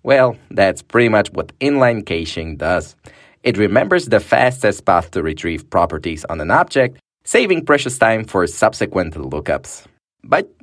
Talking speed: 145 wpm